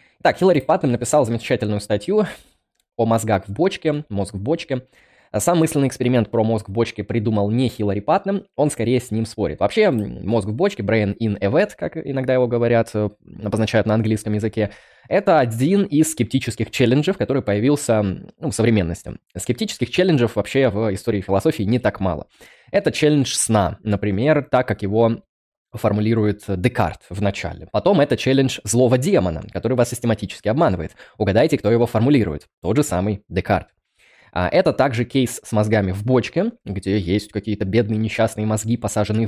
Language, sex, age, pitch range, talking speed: Russian, male, 20-39, 100-125 Hz, 160 wpm